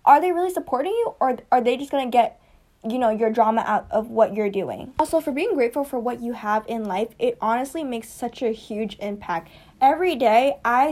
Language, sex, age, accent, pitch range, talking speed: English, female, 10-29, American, 220-265 Hz, 220 wpm